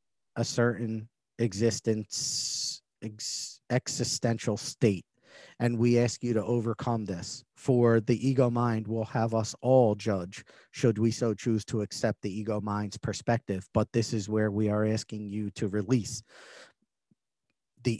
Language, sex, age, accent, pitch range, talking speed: English, male, 40-59, American, 105-120 Hz, 140 wpm